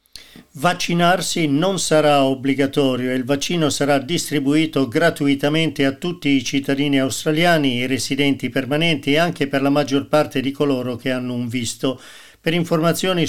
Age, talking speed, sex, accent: 50-69, 145 wpm, male, native